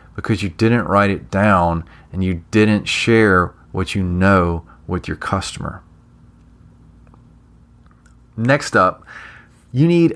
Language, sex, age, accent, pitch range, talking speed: English, male, 30-49, American, 90-110 Hz, 120 wpm